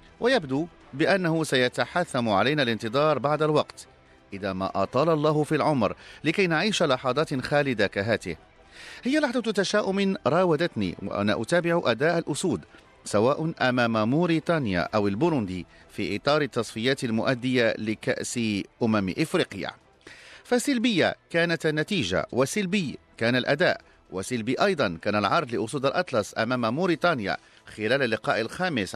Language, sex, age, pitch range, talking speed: English, male, 40-59, 110-165 Hz, 115 wpm